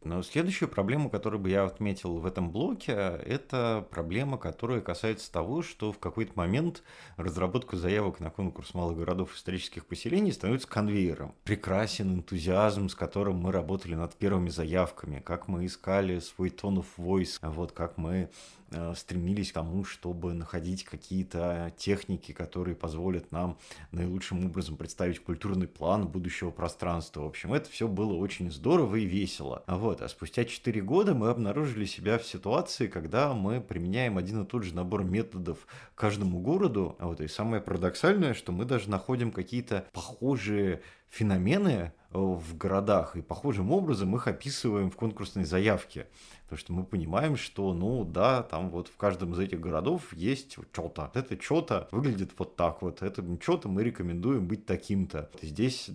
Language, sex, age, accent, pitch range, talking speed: Russian, male, 30-49, native, 90-115 Hz, 160 wpm